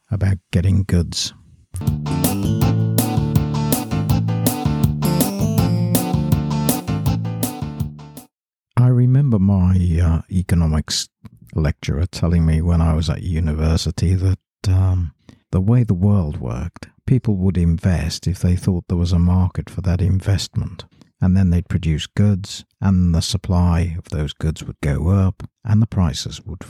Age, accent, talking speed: 60-79, British, 120 wpm